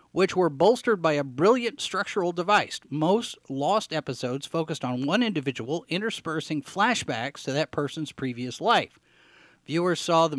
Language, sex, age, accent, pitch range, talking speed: English, male, 40-59, American, 135-185 Hz, 145 wpm